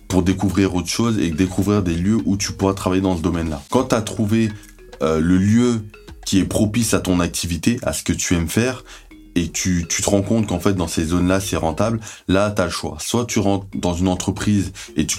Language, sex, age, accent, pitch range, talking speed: French, male, 20-39, French, 85-100 Hz, 235 wpm